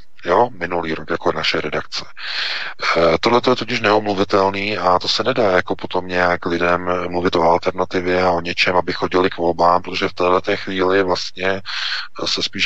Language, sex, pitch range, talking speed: Czech, male, 85-95 Hz, 170 wpm